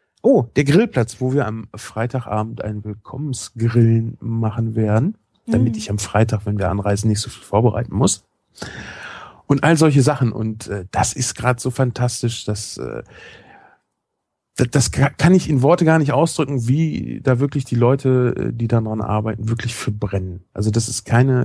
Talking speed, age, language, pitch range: 165 wpm, 40-59, German, 110-135 Hz